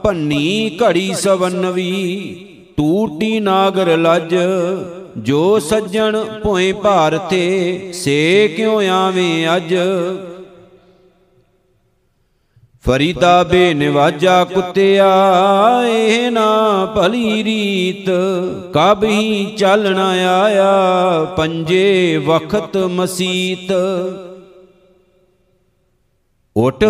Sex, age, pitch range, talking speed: male, 50-69, 180-195 Hz, 65 wpm